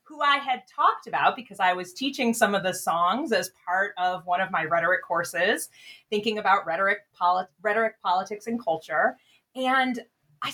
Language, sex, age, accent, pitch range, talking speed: English, female, 30-49, American, 185-260 Hz, 175 wpm